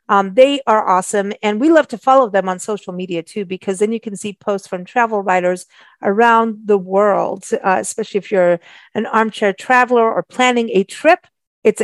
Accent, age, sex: American, 50-69, female